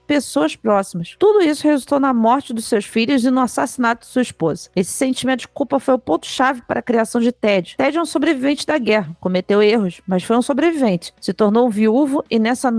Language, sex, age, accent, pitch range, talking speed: Portuguese, female, 40-59, Brazilian, 215-270 Hz, 215 wpm